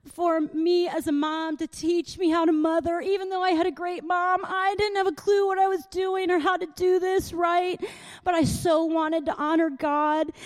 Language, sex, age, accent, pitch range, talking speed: English, female, 30-49, American, 275-345 Hz, 230 wpm